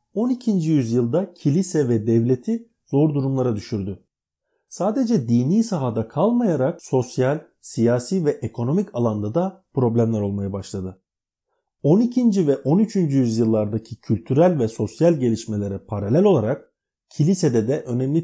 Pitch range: 110-175 Hz